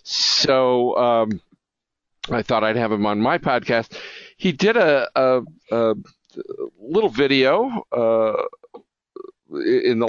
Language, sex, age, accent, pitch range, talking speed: English, male, 50-69, American, 105-155 Hz, 120 wpm